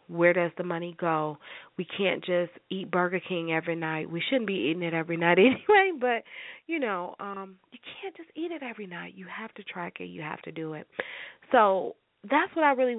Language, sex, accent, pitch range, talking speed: English, female, American, 175-240 Hz, 215 wpm